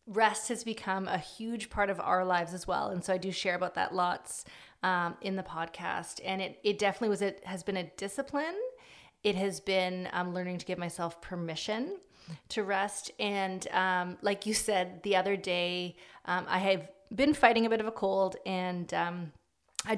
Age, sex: 30-49, female